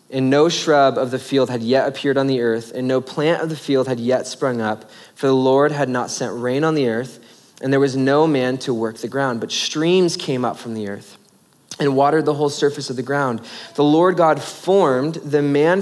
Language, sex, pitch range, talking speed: English, male, 125-160 Hz, 235 wpm